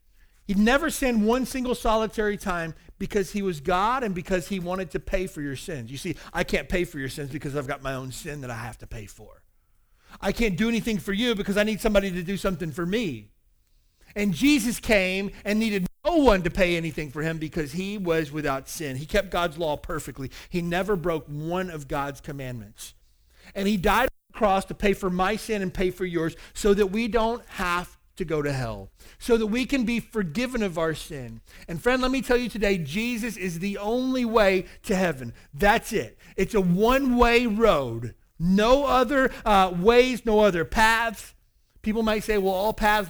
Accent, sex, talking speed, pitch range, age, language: American, male, 210 wpm, 155-215 Hz, 40-59, English